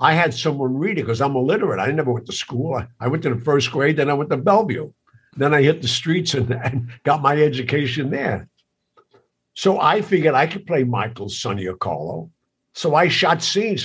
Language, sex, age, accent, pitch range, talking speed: English, male, 60-79, American, 120-145 Hz, 210 wpm